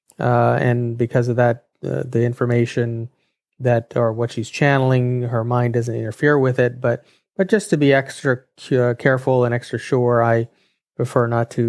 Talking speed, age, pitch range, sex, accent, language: 180 wpm, 30-49, 120-140 Hz, male, American, English